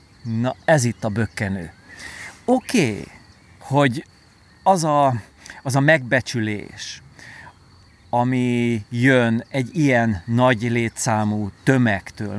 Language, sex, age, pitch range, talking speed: Hungarian, male, 40-59, 105-145 Hz, 95 wpm